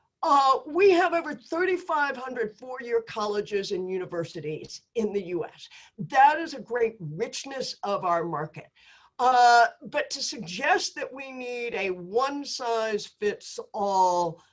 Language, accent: English, American